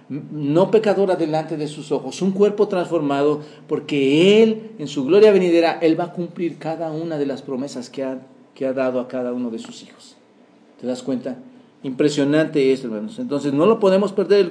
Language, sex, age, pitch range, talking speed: English, male, 40-59, 140-180 Hz, 195 wpm